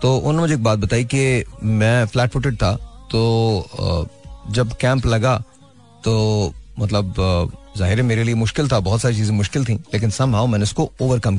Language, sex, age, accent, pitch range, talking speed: Hindi, male, 30-49, native, 115-150 Hz, 150 wpm